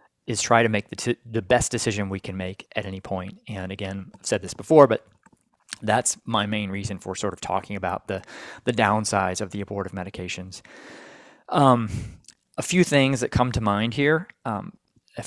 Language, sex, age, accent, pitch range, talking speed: English, male, 20-39, American, 100-120 Hz, 190 wpm